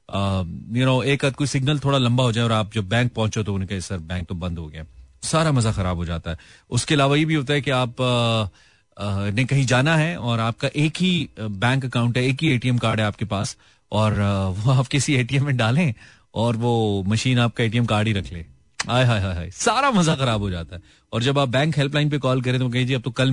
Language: Hindi